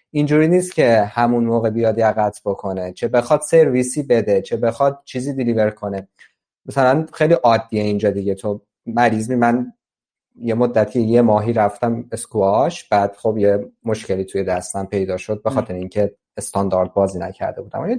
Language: Persian